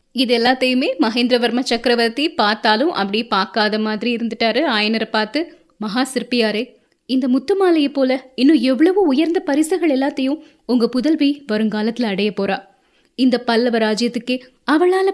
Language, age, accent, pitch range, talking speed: Tamil, 20-39, native, 220-295 Hz, 115 wpm